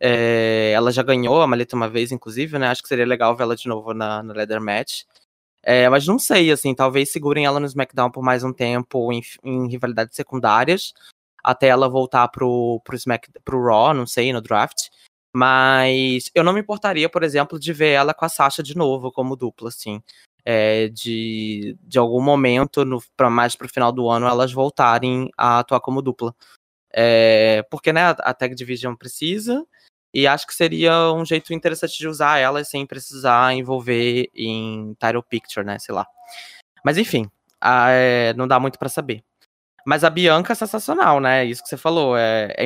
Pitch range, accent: 120-145 Hz, Brazilian